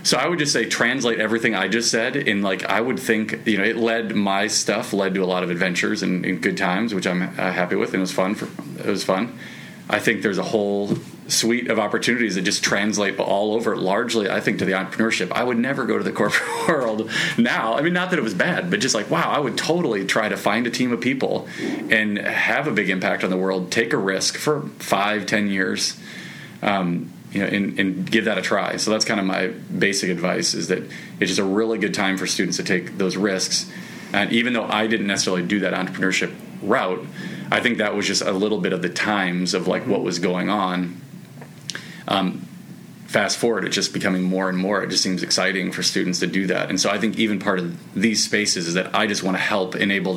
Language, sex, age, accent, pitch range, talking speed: English, male, 30-49, American, 95-110 Hz, 235 wpm